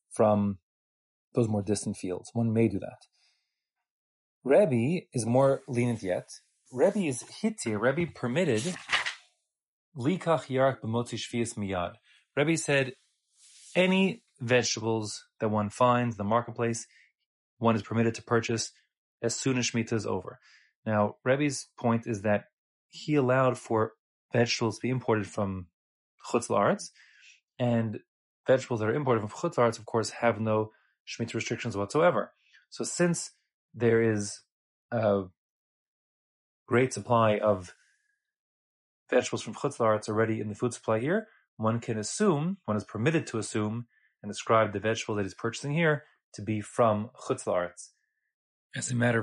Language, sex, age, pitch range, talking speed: English, male, 30-49, 110-130 Hz, 135 wpm